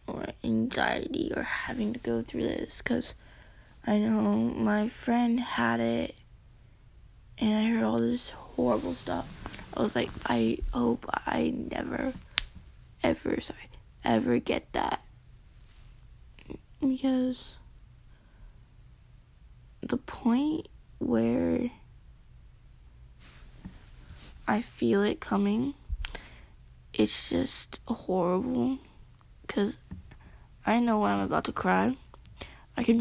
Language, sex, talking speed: English, female, 100 wpm